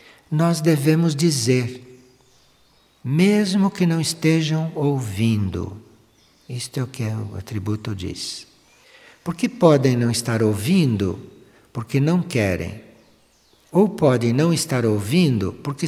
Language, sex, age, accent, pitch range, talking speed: Portuguese, male, 60-79, Brazilian, 115-170 Hz, 110 wpm